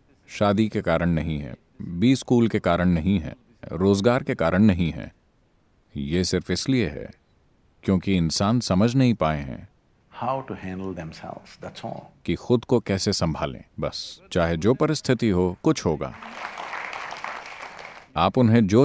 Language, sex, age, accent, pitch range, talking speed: English, male, 50-69, Indian, 85-120 Hz, 130 wpm